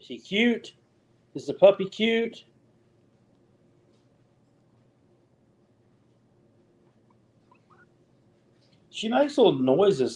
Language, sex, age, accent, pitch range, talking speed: English, male, 60-79, American, 125-185 Hz, 60 wpm